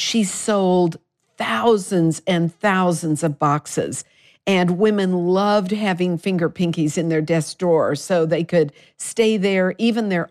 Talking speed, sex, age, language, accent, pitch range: 140 wpm, female, 50-69, English, American, 160-195 Hz